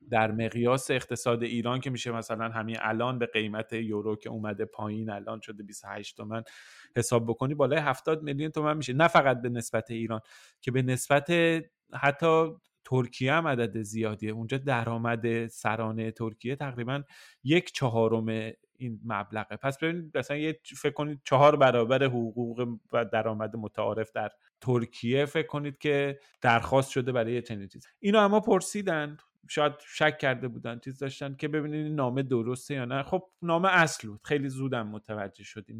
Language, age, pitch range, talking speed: Persian, 30-49, 110-135 Hz, 155 wpm